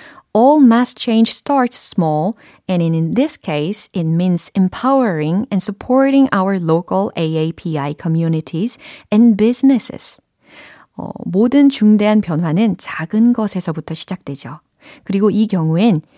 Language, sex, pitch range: Korean, female, 170-235 Hz